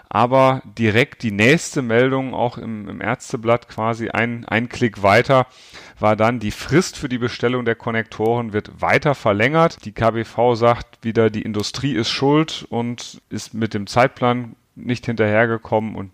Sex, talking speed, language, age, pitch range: male, 155 wpm, German, 40-59, 100-120 Hz